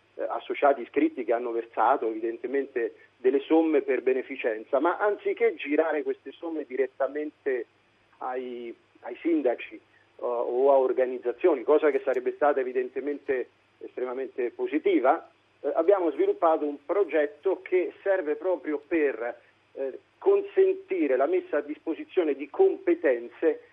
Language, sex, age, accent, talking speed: Italian, male, 40-59, native, 115 wpm